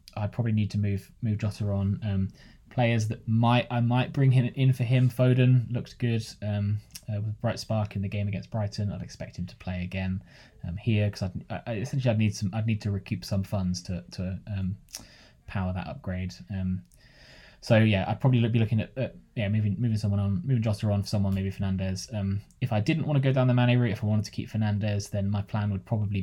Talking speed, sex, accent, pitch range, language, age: 230 wpm, male, British, 95-120 Hz, English, 20-39